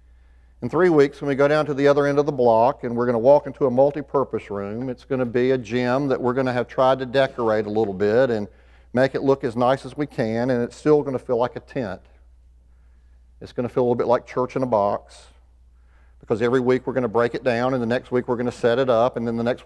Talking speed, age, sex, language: 285 wpm, 50-69, male, English